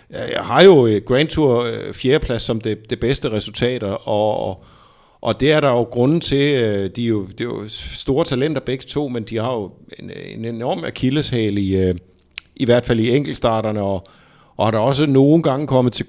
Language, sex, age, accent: Danish, male, 50-69, native